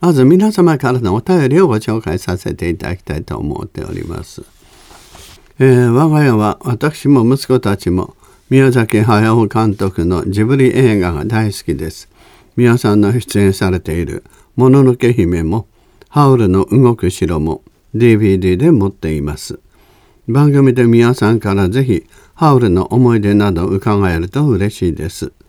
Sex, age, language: male, 50-69, Japanese